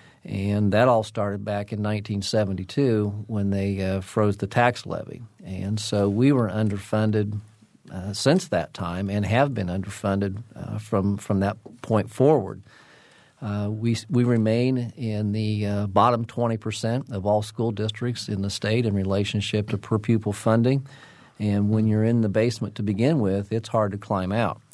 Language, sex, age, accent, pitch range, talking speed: English, male, 50-69, American, 100-115 Hz, 165 wpm